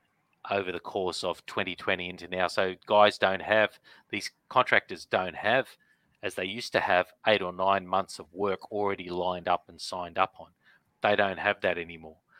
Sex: male